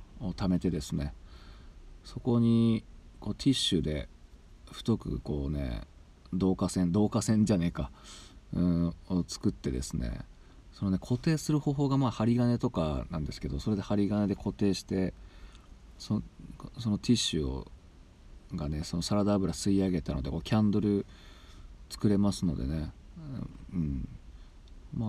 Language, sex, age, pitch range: Japanese, male, 40-59, 80-105 Hz